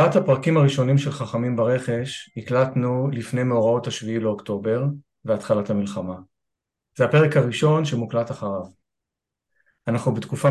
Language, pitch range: Hebrew, 110-135 Hz